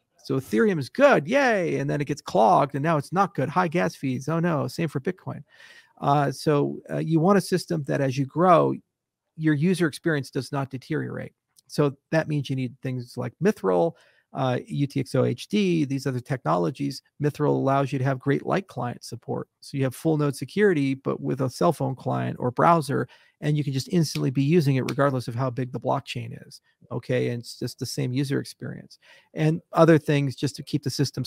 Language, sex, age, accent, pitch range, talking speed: Italian, male, 40-59, American, 130-155 Hz, 205 wpm